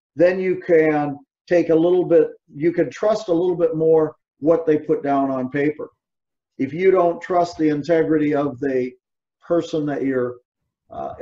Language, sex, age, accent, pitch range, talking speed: English, male, 50-69, American, 140-165 Hz, 170 wpm